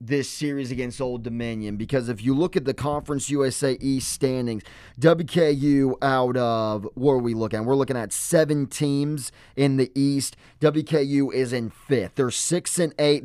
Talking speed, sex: 175 wpm, male